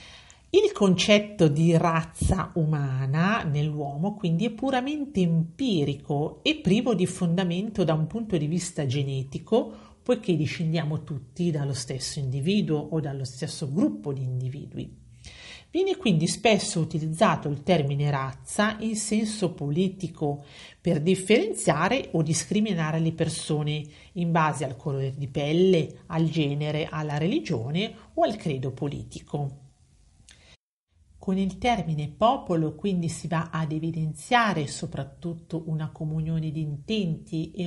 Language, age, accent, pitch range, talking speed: Italian, 40-59, native, 145-185 Hz, 125 wpm